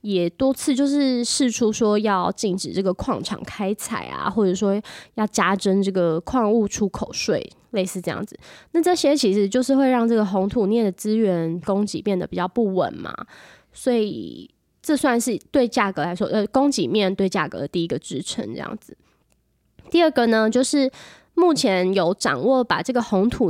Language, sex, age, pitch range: Chinese, female, 20-39, 185-240 Hz